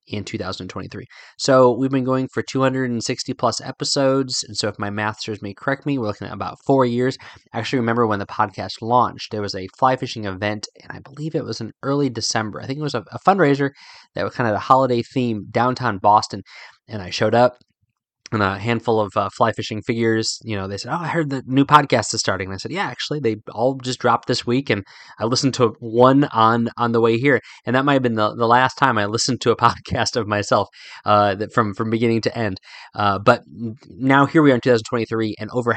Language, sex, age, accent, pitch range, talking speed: English, male, 20-39, American, 105-130 Hz, 235 wpm